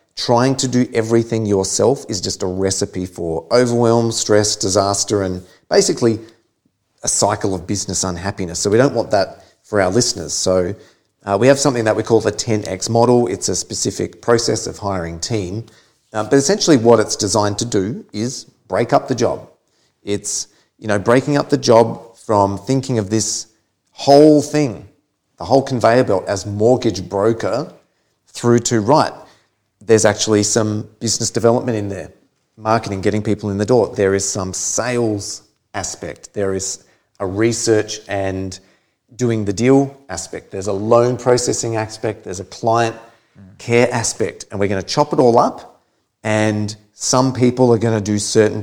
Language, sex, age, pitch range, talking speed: English, male, 30-49, 100-120 Hz, 165 wpm